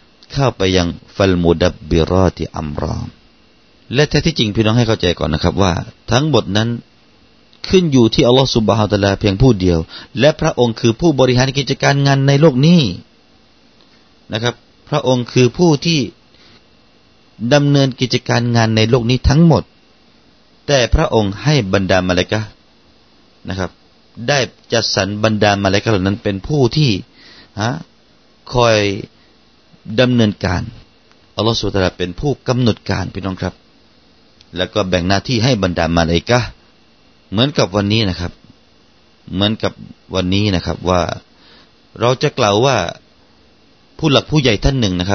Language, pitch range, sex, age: Thai, 95-130 Hz, male, 30-49